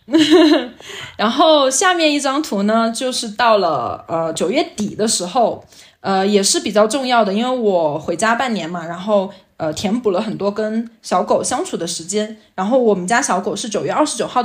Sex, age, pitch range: female, 10-29, 185-245 Hz